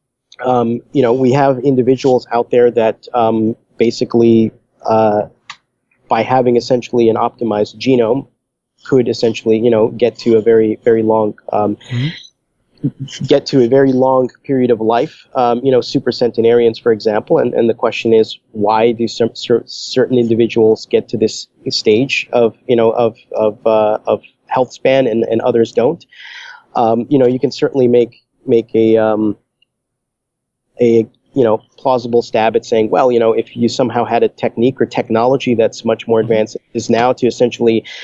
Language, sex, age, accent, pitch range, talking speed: English, male, 30-49, American, 115-125 Hz, 170 wpm